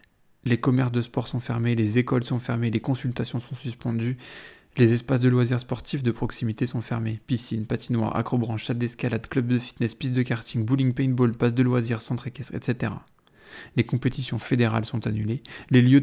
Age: 20-39